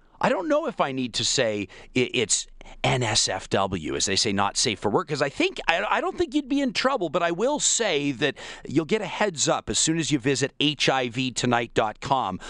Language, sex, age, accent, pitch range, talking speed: English, male, 40-59, American, 125-175 Hz, 205 wpm